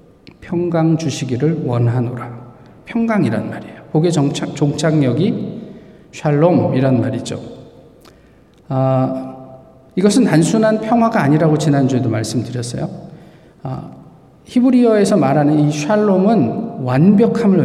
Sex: male